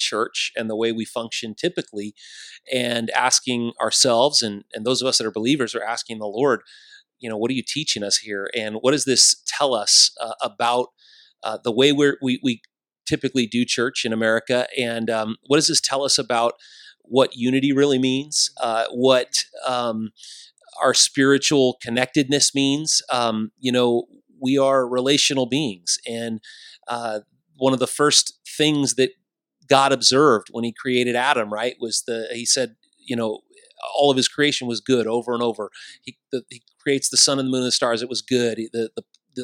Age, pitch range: 30-49, 115-140 Hz